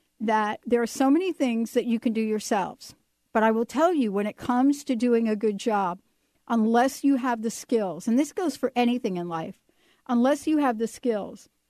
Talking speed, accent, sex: 210 wpm, American, female